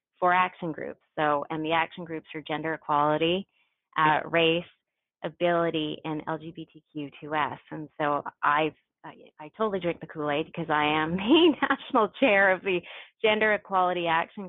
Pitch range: 160-195 Hz